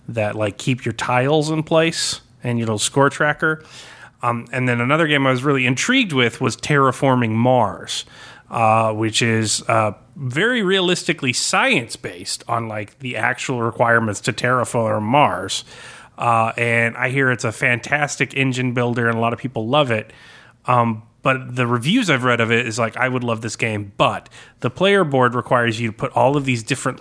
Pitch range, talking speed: 115-140 Hz, 185 wpm